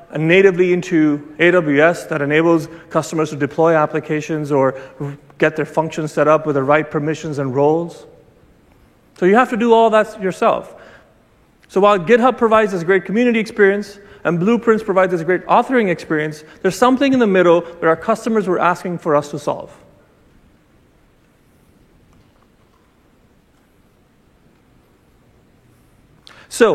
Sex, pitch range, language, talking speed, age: male, 155-210 Hz, English, 135 wpm, 30-49